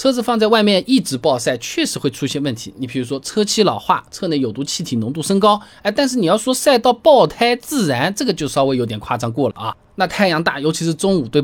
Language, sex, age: Chinese, male, 20-39